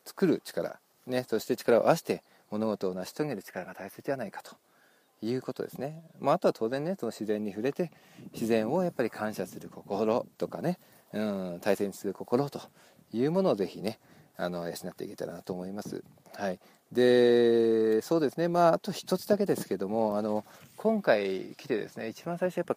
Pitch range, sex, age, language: 110-175 Hz, male, 40-59, Japanese